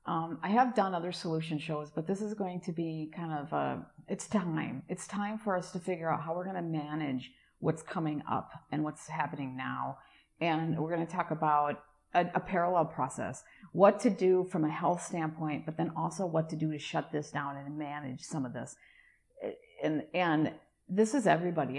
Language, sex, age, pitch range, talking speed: English, female, 40-59, 155-180 Hz, 205 wpm